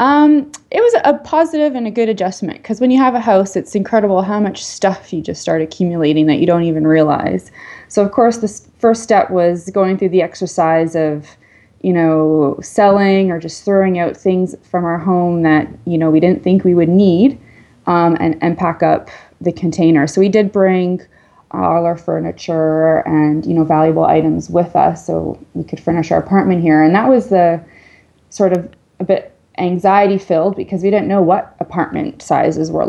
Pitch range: 170-210 Hz